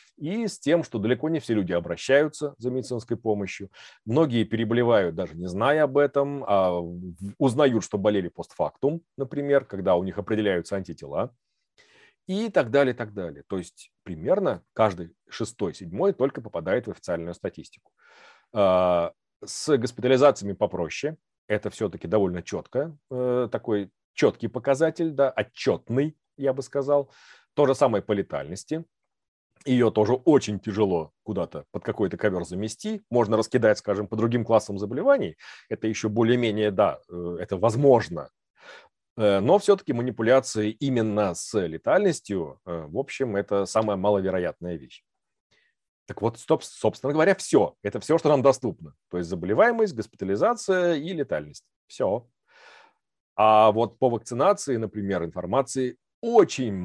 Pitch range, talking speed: 100-140 Hz, 130 wpm